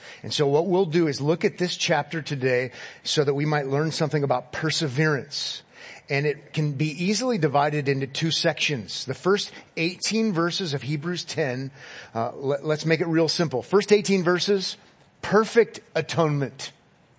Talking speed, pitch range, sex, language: 165 wpm, 150-205 Hz, male, English